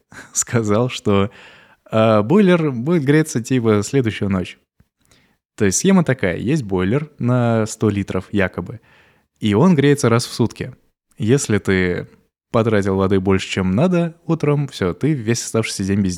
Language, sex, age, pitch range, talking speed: Russian, male, 20-39, 100-130 Hz, 145 wpm